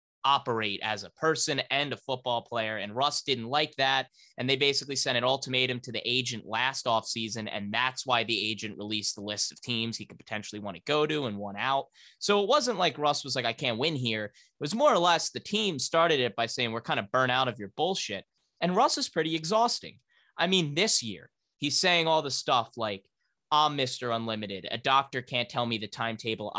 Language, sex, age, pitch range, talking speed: English, male, 20-39, 110-155 Hz, 225 wpm